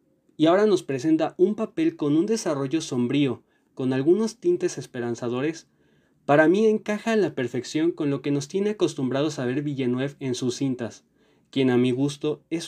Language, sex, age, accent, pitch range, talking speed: Spanish, male, 20-39, Mexican, 125-165 Hz, 175 wpm